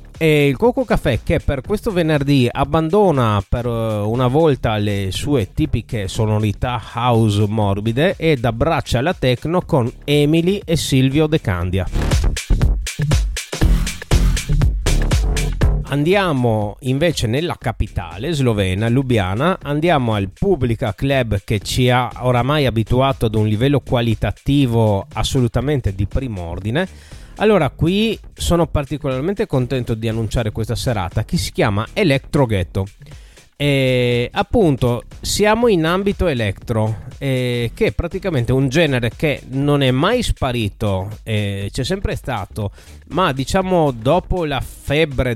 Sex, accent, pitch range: male, native, 110-150 Hz